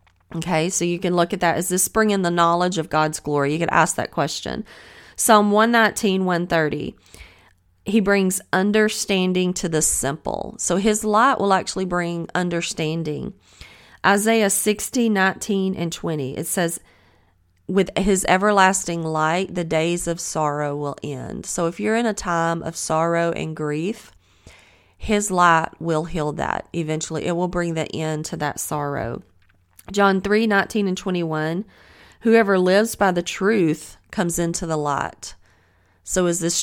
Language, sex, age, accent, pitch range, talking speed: English, female, 30-49, American, 155-190 Hz, 155 wpm